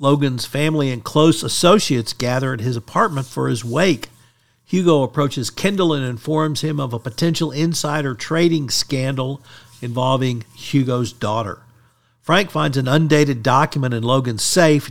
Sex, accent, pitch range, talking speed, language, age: male, American, 120-150 Hz, 140 wpm, English, 50-69